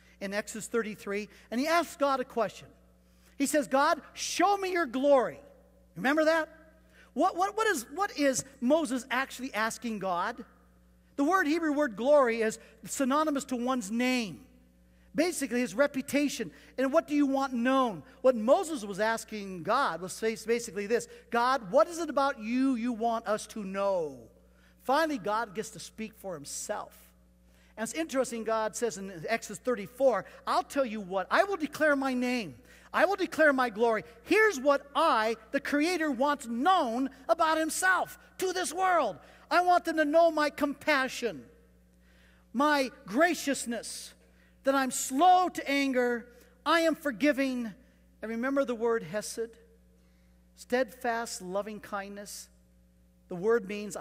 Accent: American